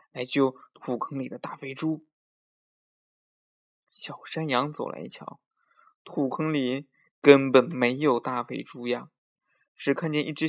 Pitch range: 125-160 Hz